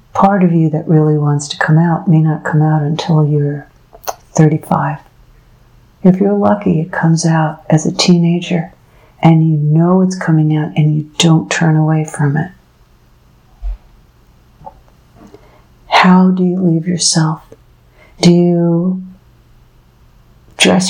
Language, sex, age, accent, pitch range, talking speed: English, female, 60-79, American, 160-180 Hz, 130 wpm